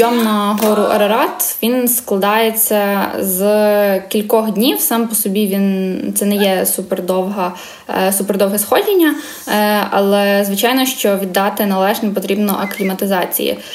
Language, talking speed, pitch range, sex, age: Ukrainian, 115 wpm, 190-220 Hz, female, 20-39